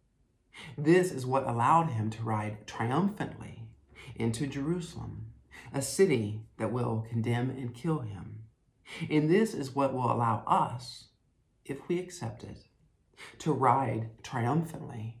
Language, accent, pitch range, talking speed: English, American, 110-125 Hz, 125 wpm